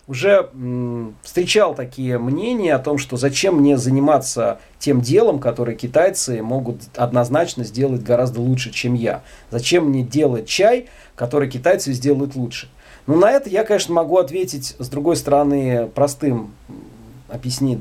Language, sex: Russian, male